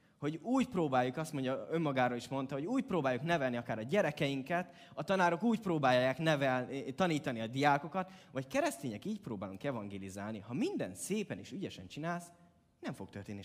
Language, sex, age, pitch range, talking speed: Hungarian, male, 20-39, 115-175 Hz, 165 wpm